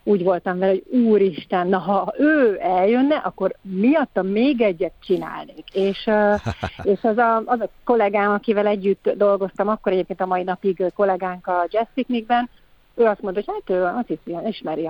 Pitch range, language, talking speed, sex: 185-225 Hz, Hungarian, 165 wpm, female